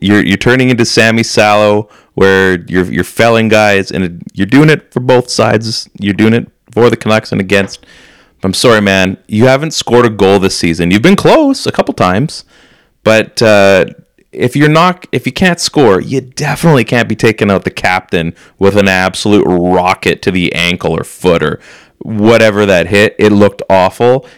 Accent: American